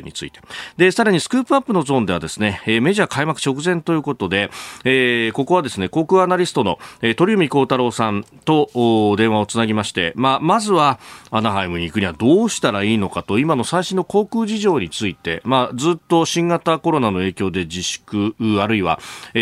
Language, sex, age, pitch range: Japanese, male, 30-49, 100-160 Hz